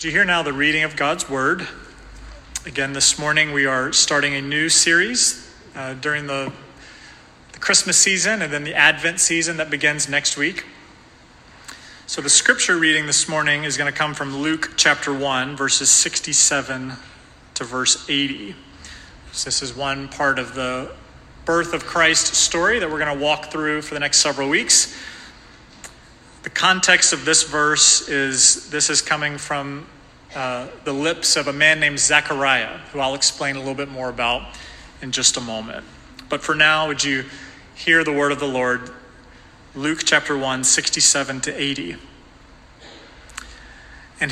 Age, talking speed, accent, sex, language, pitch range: 30-49, 160 wpm, American, male, English, 135-155 Hz